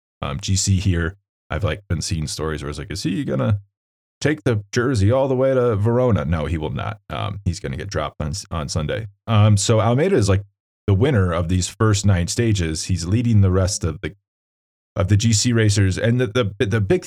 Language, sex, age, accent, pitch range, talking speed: English, male, 30-49, American, 95-115 Hz, 220 wpm